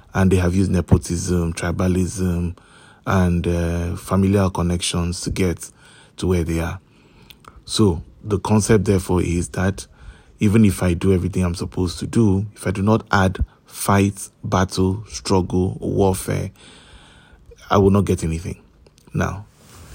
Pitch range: 85-100 Hz